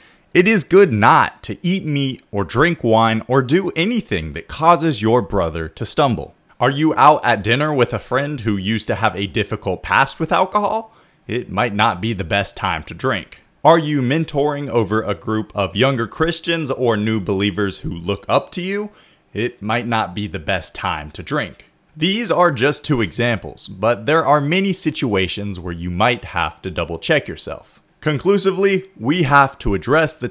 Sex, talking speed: male, 185 wpm